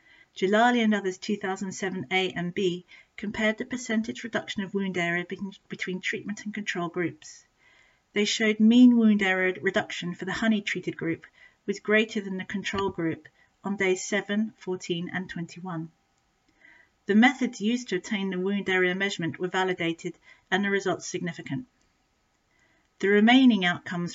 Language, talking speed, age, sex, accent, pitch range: English, 150 wpm, 40-59, female, British, 180-215 Hz